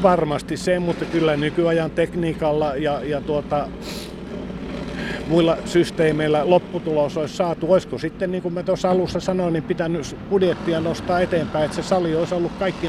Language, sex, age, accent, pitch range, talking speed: Finnish, male, 50-69, native, 140-180 Hz, 155 wpm